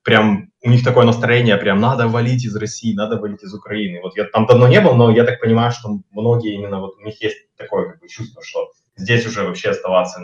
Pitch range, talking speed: 105-165 Hz, 235 wpm